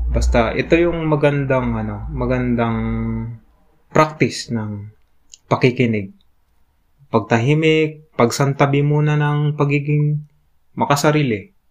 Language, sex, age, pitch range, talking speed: Filipino, male, 20-39, 105-140 Hz, 75 wpm